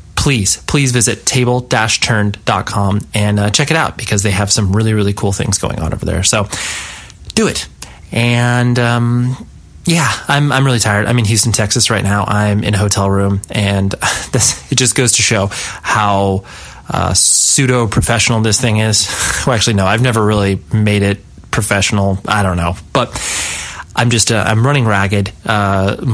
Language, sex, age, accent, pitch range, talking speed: English, male, 20-39, American, 100-120 Hz, 170 wpm